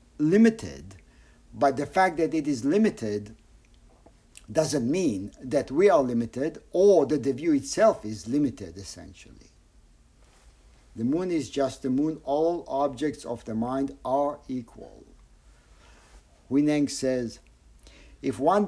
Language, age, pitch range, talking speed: English, 50-69, 110-150 Hz, 125 wpm